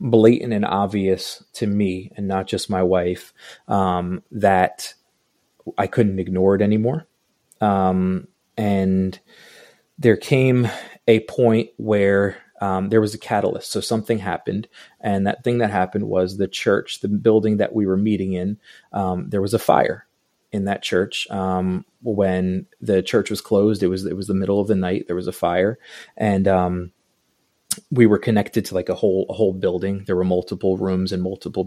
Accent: American